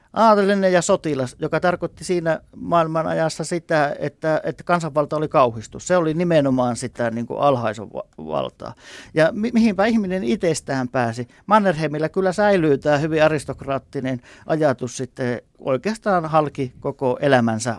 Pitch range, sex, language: 140-180 Hz, male, Finnish